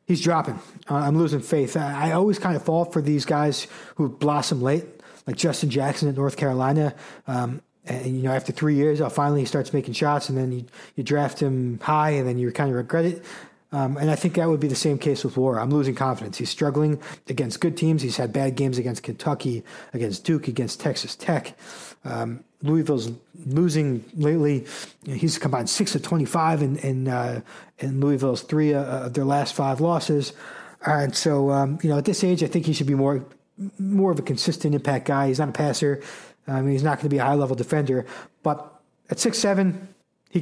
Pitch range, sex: 135-165 Hz, male